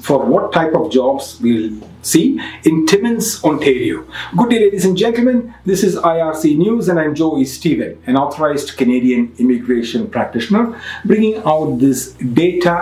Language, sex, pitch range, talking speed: English, male, 125-190 Hz, 150 wpm